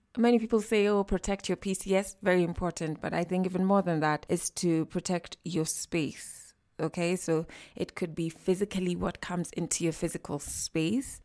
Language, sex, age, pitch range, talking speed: English, female, 20-39, 165-210 Hz, 180 wpm